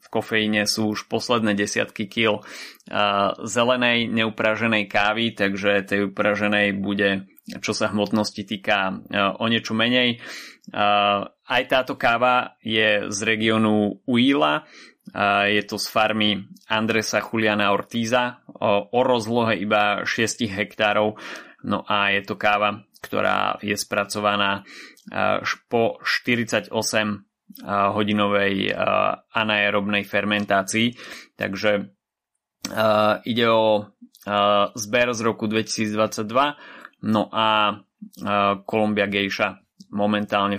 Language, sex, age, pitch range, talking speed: Slovak, male, 20-39, 100-115 Hz, 110 wpm